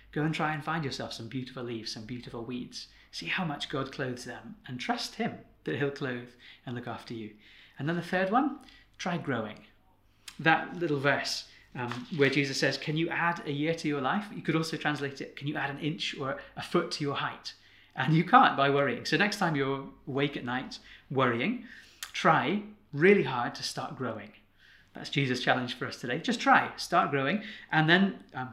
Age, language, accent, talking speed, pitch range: 30-49, English, British, 205 wpm, 125-165 Hz